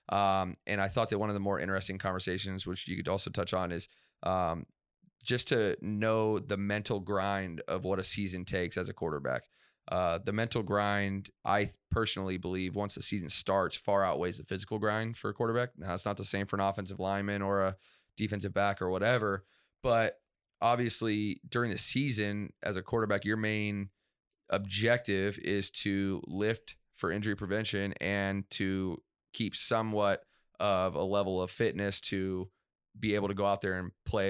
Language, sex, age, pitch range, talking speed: English, male, 30-49, 95-110 Hz, 180 wpm